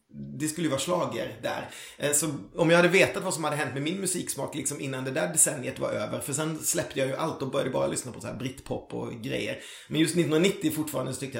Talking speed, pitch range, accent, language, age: 255 wpm, 130-170 Hz, native, Swedish, 30-49